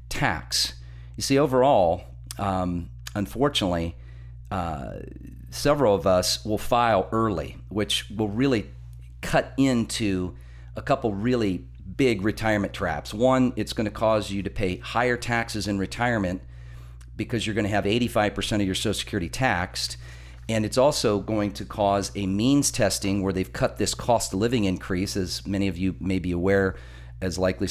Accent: American